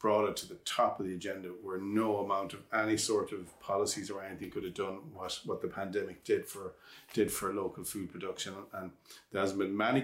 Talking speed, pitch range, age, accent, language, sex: 220 wpm, 95-115 Hz, 40-59, Irish, English, male